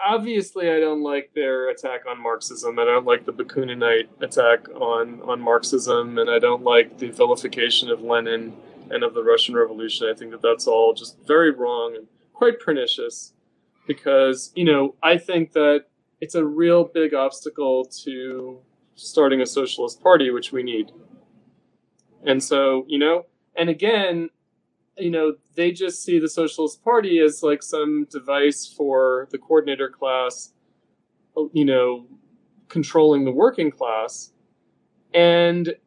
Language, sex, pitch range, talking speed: English, male, 135-210 Hz, 150 wpm